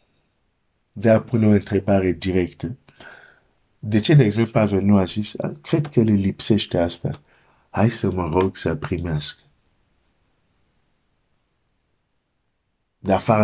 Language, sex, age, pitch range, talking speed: Romanian, male, 50-69, 90-115 Hz, 50 wpm